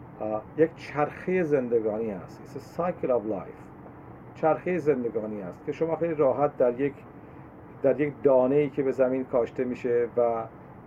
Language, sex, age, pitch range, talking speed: Persian, male, 50-69, 125-150 Hz, 145 wpm